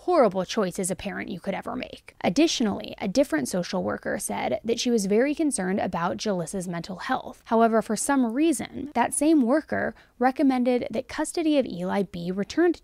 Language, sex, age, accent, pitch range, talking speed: English, female, 20-39, American, 205-265 Hz, 175 wpm